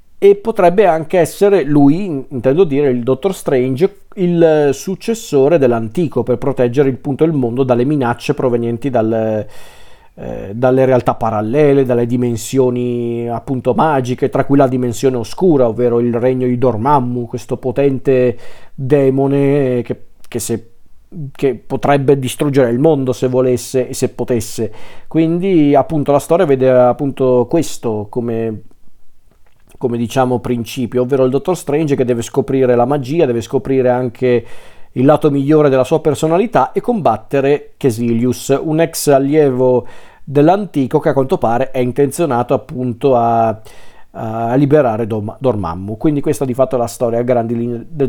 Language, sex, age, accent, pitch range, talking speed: Italian, male, 40-59, native, 120-145 Hz, 140 wpm